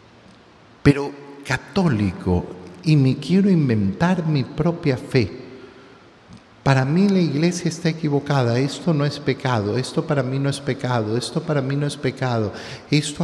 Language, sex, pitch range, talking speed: Spanish, male, 110-155 Hz, 145 wpm